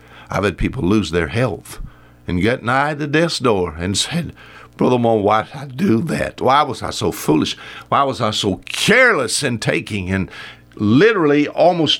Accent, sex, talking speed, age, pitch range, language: American, male, 180 wpm, 60-79, 85-135 Hz, English